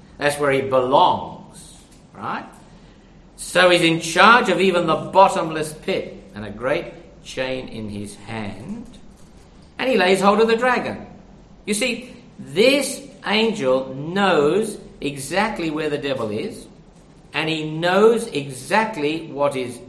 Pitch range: 155-205 Hz